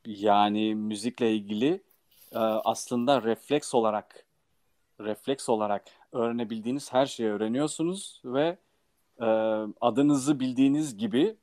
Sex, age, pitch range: male, 40-59, 105-135 Hz